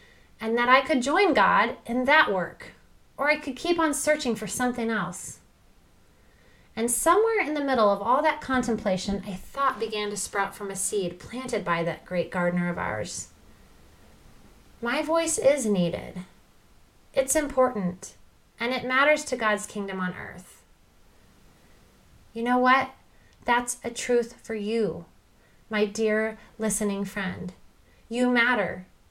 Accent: American